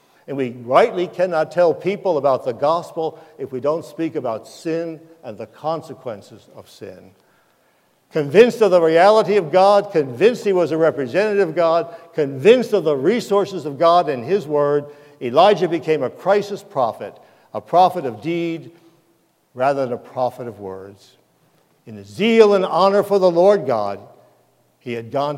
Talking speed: 160 wpm